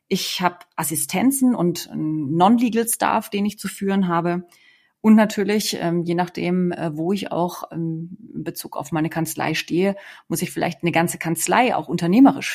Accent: German